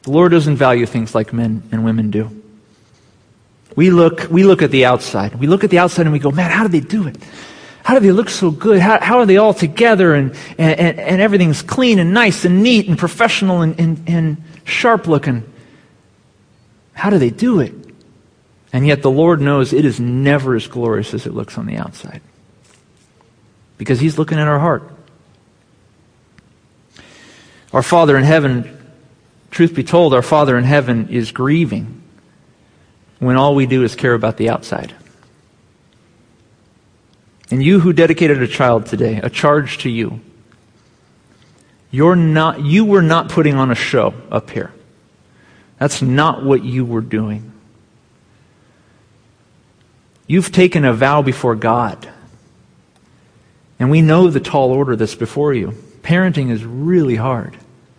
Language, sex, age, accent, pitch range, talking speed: English, male, 40-59, American, 115-165 Hz, 160 wpm